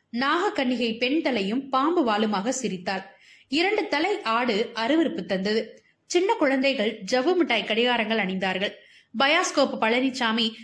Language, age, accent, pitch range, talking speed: Tamil, 20-39, native, 210-295 Hz, 70 wpm